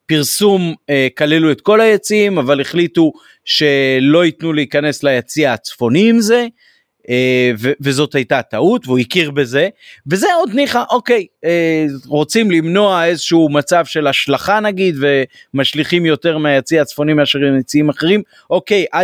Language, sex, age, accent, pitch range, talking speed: Hebrew, male, 30-49, native, 130-170 Hz, 140 wpm